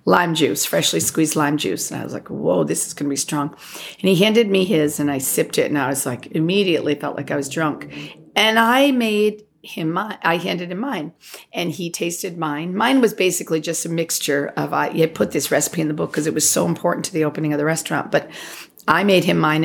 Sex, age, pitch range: female, 40-59, 150-195 Hz